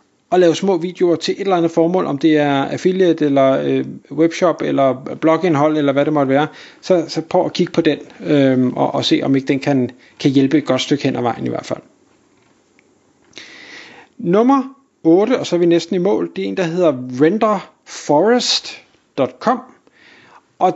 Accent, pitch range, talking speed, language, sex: native, 155-200 Hz, 180 wpm, Danish, male